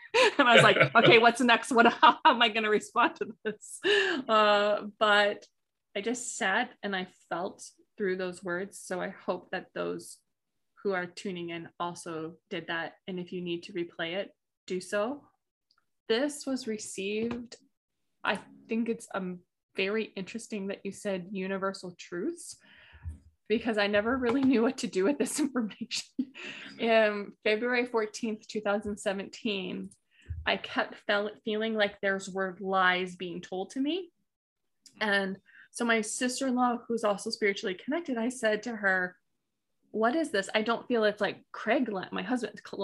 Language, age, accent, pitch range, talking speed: English, 20-39, American, 195-240 Hz, 160 wpm